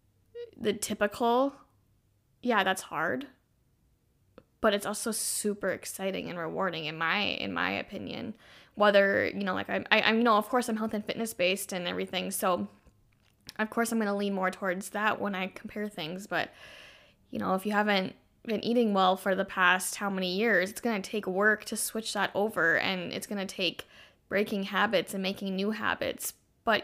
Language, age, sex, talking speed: English, 10-29, female, 185 wpm